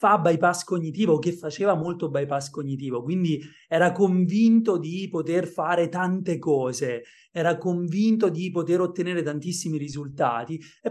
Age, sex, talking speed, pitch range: 30-49, male, 130 wpm, 145-185 Hz